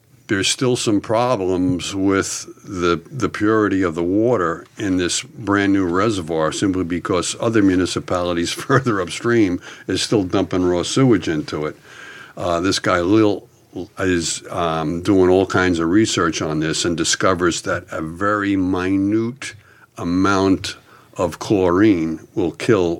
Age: 60-79